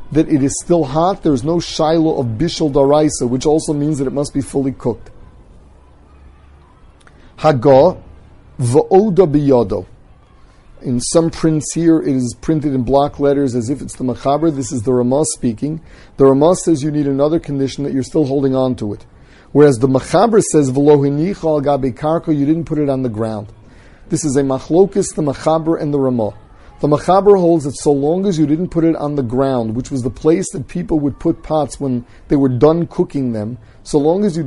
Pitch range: 125-155 Hz